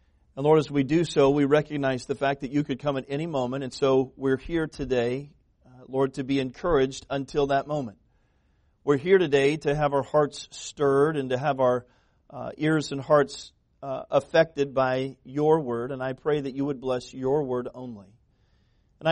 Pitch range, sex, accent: 125-150 Hz, male, American